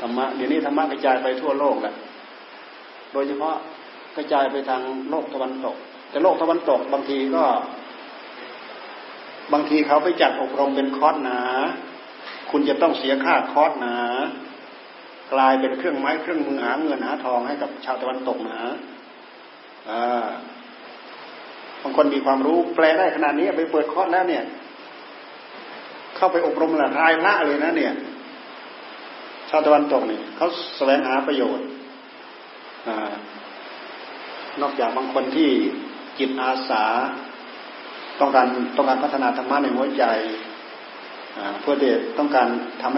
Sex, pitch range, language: male, 130-155 Hz, Thai